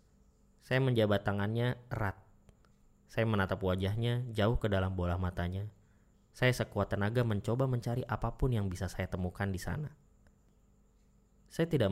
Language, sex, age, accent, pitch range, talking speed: Indonesian, male, 20-39, native, 95-115 Hz, 130 wpm